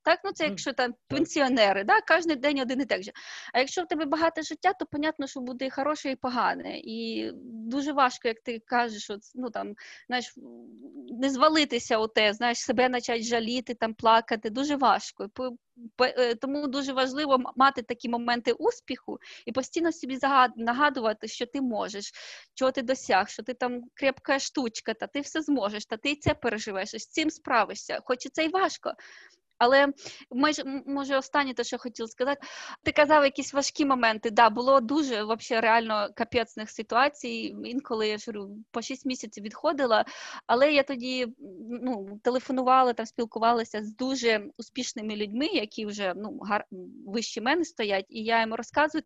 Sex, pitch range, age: female, 225-280 Hz, 20-39